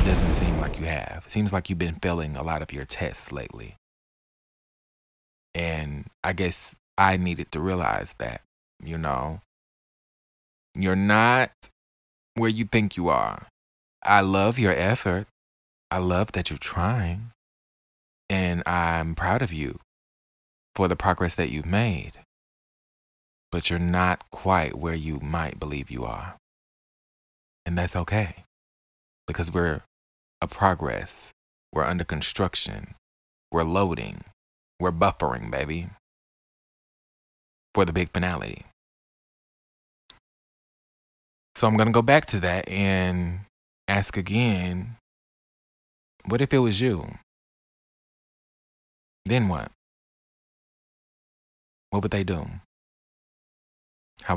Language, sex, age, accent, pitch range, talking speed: English, male, 20-39, American, 75-95 Hz, 115 wpm